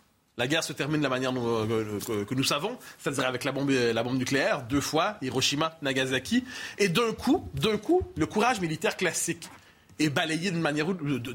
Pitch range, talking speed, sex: 145-210 Hz, 190 wpm, male